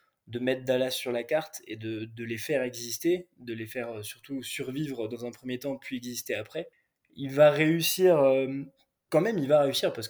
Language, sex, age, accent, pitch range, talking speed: French, male, 20-39, French, 120-140 Hz, 200 wpm